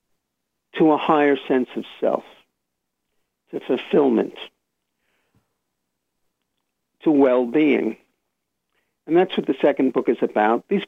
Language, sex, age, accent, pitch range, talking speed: English, male, 50-69, American, 120-160 Hz, 105 wpm